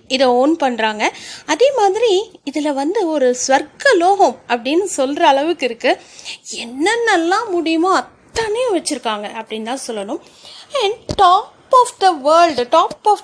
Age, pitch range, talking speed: 30-49, 250-360 Hz, 125 wpm